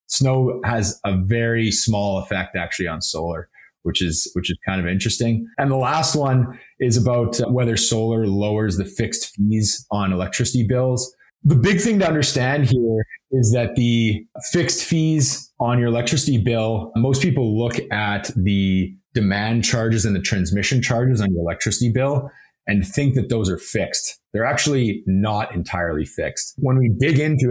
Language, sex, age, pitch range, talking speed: English, male, 30-49, 100-125 Hz, 165 wpm